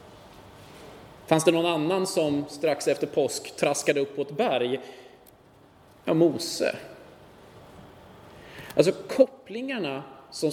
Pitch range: 135-175 Hz